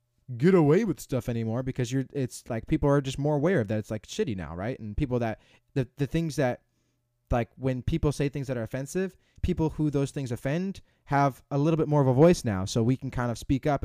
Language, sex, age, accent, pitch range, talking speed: English, male, 20-39, American, 120-145 Hz, 245 wpm